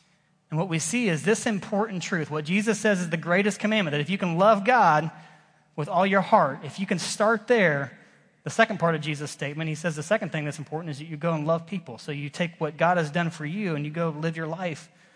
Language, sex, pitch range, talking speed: English, male, 155-210 Hz, 255 wpm